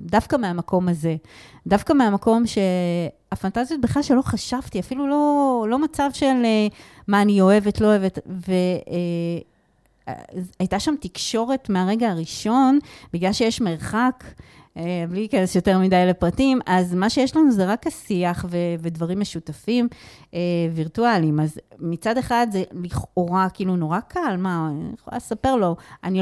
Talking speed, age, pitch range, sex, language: 130 wpm, 30-49, 175-220 Hz, female, Hebrew